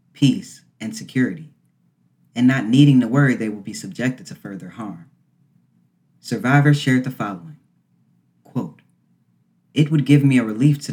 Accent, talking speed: American, 150 wpm